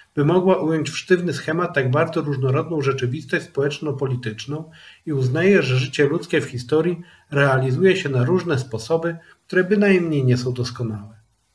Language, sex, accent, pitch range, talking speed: Polish, male, native, 130-170 Hz, 145 wpm